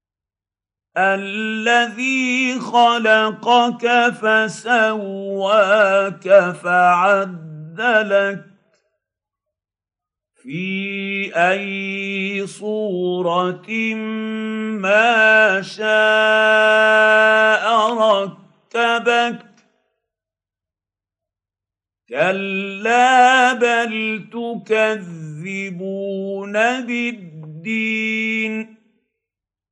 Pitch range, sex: 185-220 Hz, male